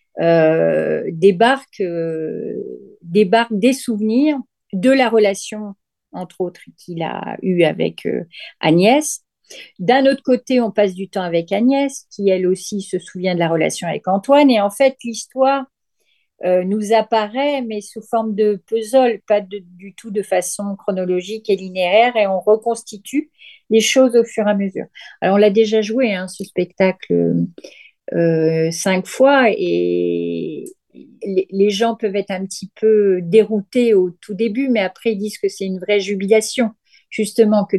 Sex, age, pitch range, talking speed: female, 50-69, 180-225 Hz, 160 wpm